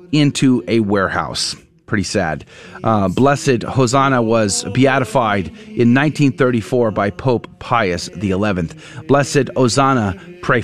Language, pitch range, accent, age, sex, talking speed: English, 130-185 Hz, American, 40-59, male, 105 wpm